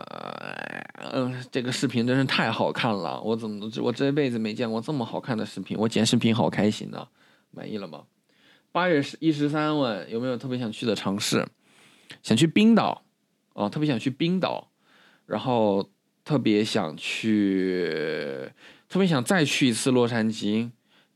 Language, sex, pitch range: Chinese, male, 105-130 Hz